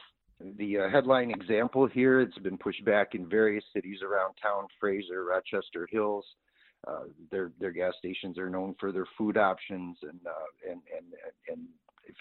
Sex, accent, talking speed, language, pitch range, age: male, American, 160 wpm, English, 90-115 Hz, 50-69